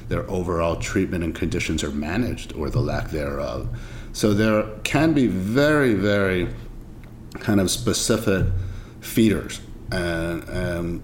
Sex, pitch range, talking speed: male, 85-110 Hz, 125 wpm